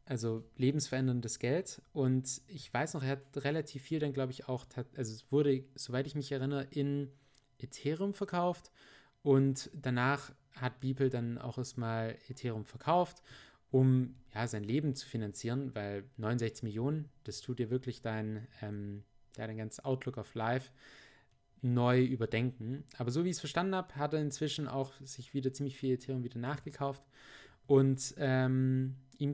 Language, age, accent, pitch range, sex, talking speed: German, 20-39, German, 120-140 Hz, male, 160 wpm